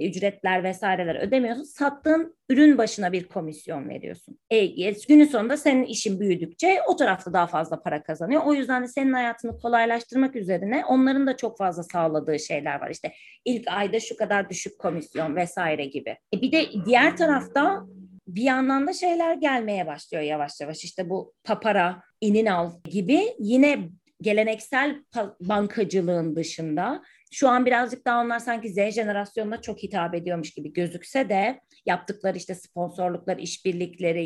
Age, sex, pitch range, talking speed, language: 30-49, female, 180-250 Hz, 150 wpm, Turkish